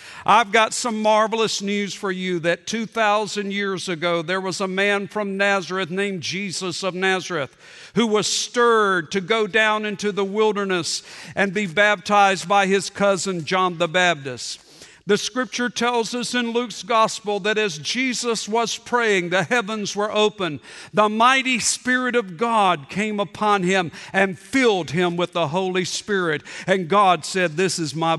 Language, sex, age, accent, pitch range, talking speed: English, male, 50-69, American, 195-250 Hz, 160 wpm